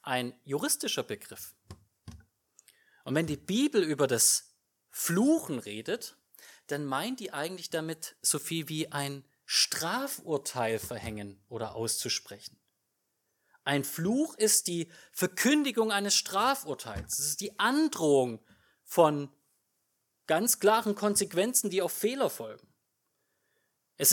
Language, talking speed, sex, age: German, 110 wpm, male, 30-49